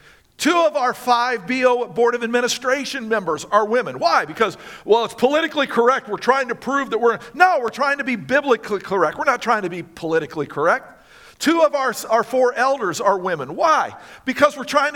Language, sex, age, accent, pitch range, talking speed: English, male, 50-69, American, 195-255 Hz, 195 wpm